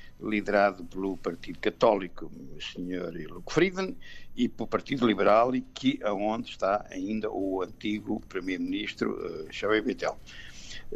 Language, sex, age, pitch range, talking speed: Portuguese, male, 60-79, 110-155 Hz, 125 wpm